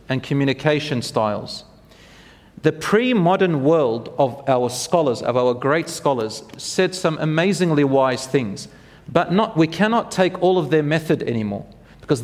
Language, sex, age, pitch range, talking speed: English, male, 40-59, 140-170 Hz, 140 wpm